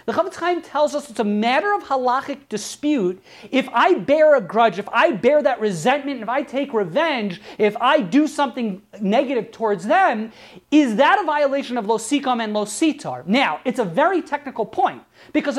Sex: male